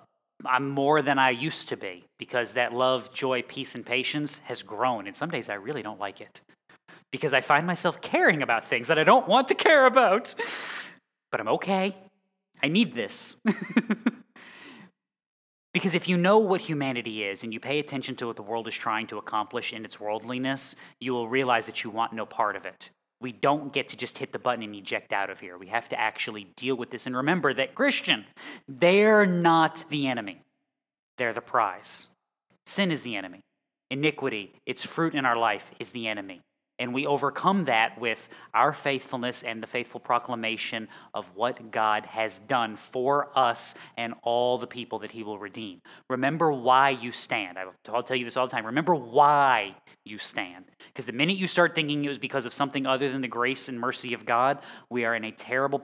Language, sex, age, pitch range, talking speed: English, male, 30-49, 115-150 Hz, 200 wpm